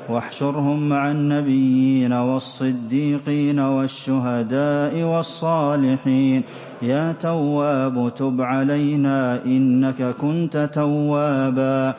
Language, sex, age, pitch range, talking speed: English, male, 30-49, 130-150 Hz, 65 wpm